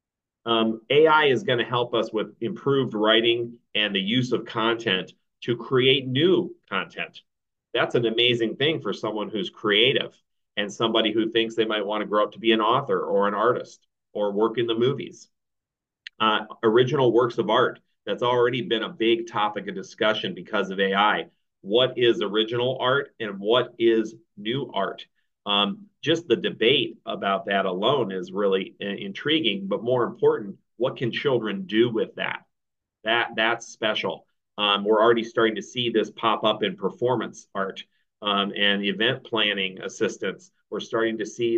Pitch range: 105-120 Hz